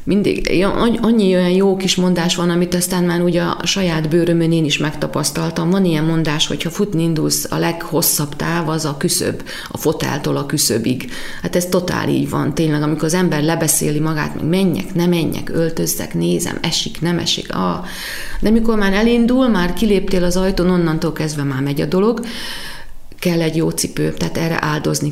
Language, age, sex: Hungarian, 30-49, female